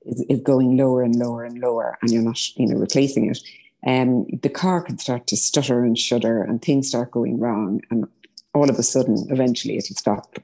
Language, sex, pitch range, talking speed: English, female, 120-145 Hz, 215 wpm